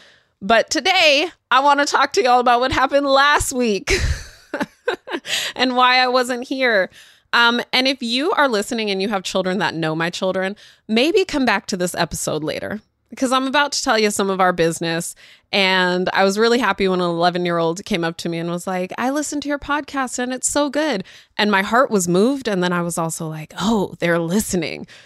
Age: 20-39